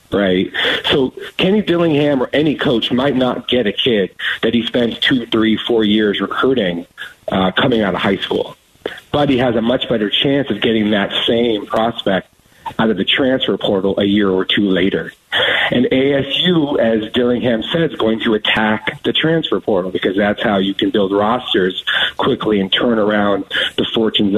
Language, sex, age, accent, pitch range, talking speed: English, male, 40-59, American, 105-125 Hz, 180 wpm